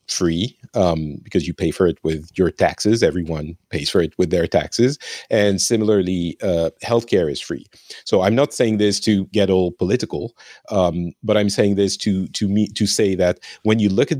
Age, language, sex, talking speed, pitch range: 40-59, English, male, 205 wpm, 90-105 Hz